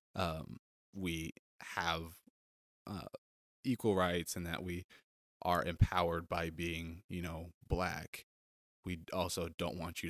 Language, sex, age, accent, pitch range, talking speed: English, male, 20-39, American, 80-90 Hz, 125 wpm